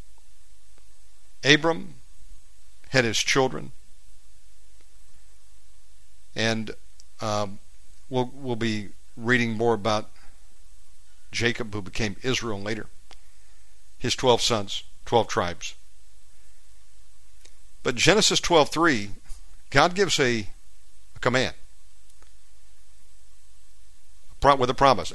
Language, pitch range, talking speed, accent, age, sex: English, 90-130 Hz, 80 wpm, American, 60-79, male